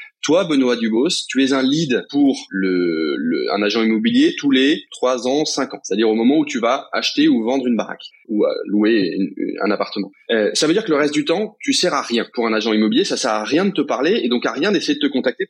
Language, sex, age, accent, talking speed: French, male, 20-39, French, 265 wpm